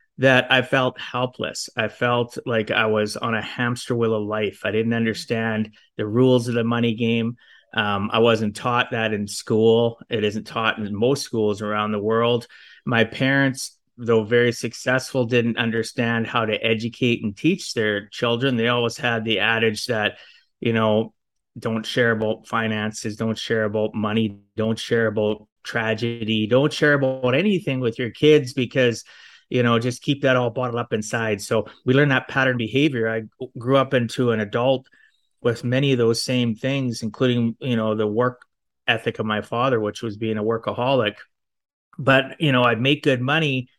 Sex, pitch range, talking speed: male, 110-125 Hz, 180 wpm